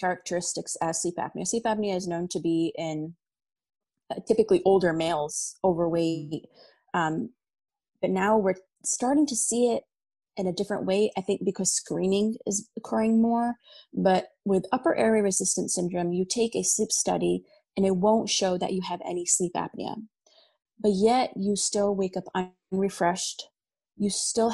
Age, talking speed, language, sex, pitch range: 30-49, 160 wpm, English, female, 185-225 Hz